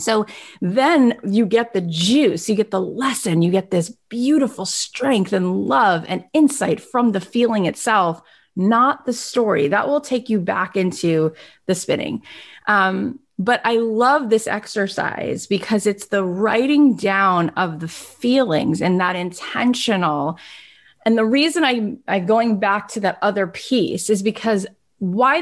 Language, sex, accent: English, female, American